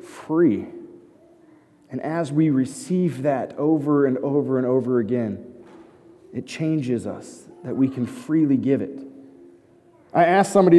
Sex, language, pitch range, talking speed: male, English, 140-195 Hz, 135 wpm